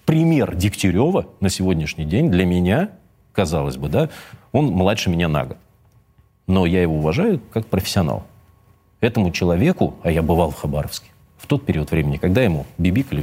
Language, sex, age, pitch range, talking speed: Russian, male, 40-59, 85-110 Hz, 160 wpm